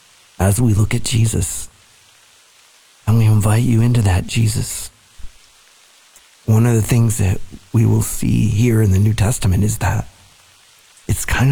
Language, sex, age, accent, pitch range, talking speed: English, male, 50-69, American, 95-115 Hz, 150 wpm